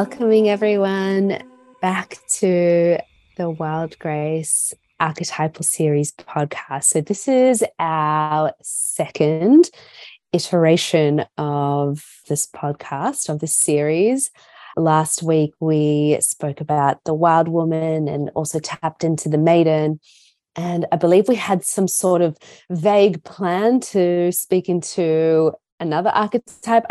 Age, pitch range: 20-39, 155-185 Hz